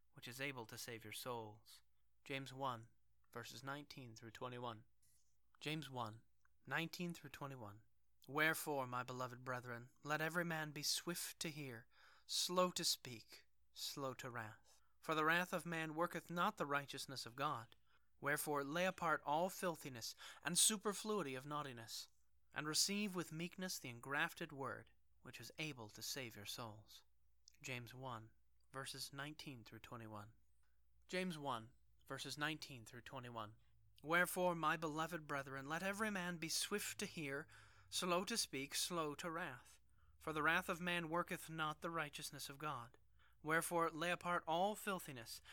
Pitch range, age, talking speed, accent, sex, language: 120-165 Hz, 30-49, 150 wpm, American, male, English